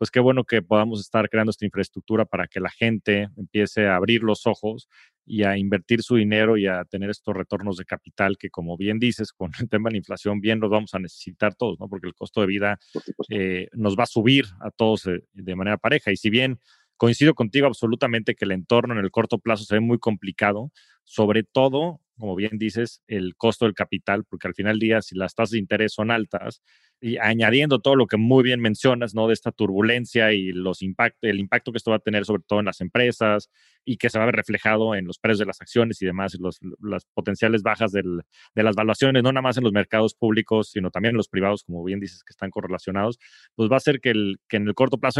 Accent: Mexican